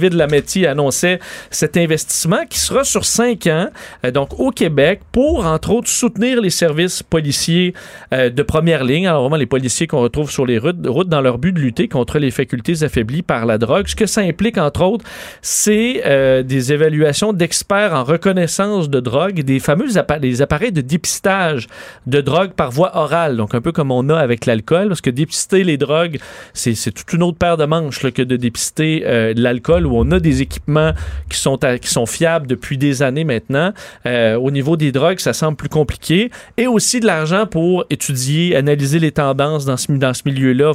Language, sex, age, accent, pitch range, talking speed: French, male, 40-59, Canadian, 135-180 Hz, 195 wpm